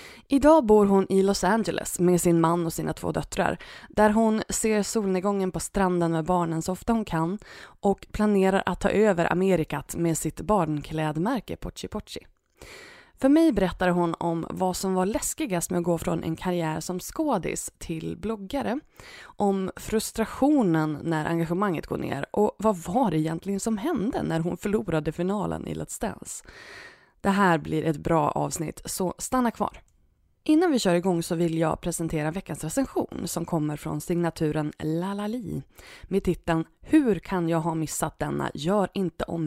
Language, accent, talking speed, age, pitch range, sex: Swedish, native, 165 wpm, 20-39, 165-215 Hz, female